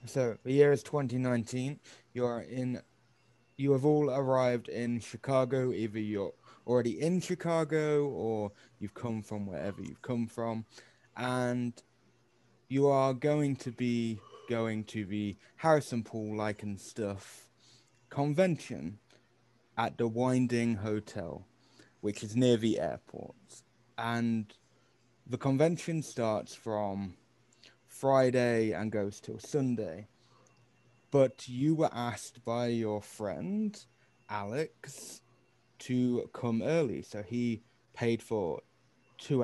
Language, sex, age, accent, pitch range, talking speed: English, male, 20-39, British, 115-130 Hz, 115 wpm